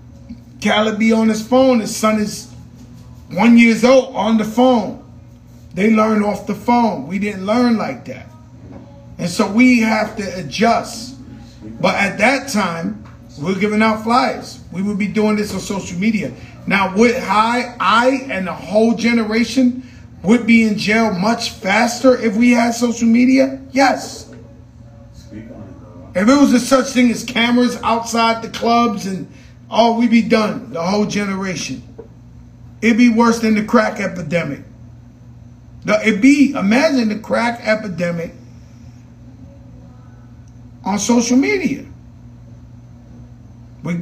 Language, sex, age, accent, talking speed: English, male, 30-49, American, 140 wpm